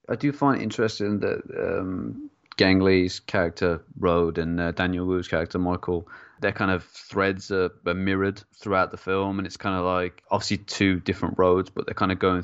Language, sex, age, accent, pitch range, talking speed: English, male, 20-39, British, 85-95 Hz, 195 wpm